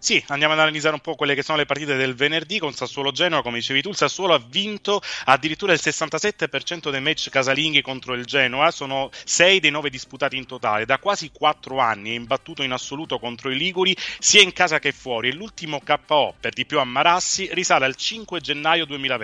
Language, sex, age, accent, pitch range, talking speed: Italian, male, 30-49, native, 135-175 Hz, 205 wpm